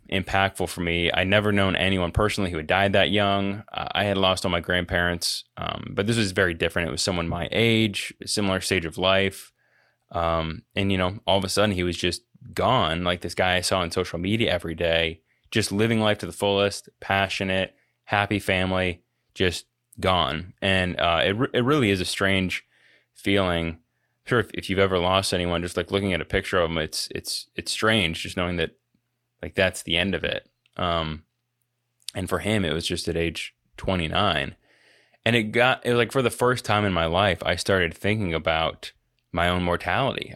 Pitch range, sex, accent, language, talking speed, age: 85-105 Hz, male, American, English, 205 wpm, 20-39